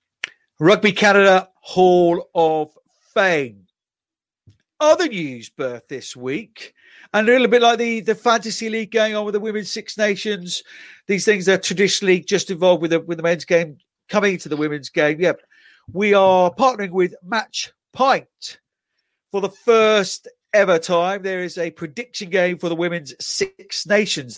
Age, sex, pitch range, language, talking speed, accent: 50-69, male, 150-210 Hz, English, 160 wpm, British